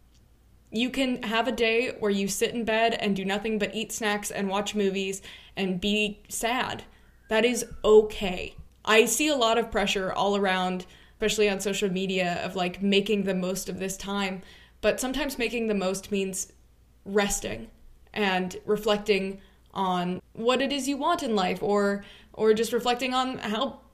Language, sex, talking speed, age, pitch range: English, female, 170 wpm, 20-39, 195-230 Hz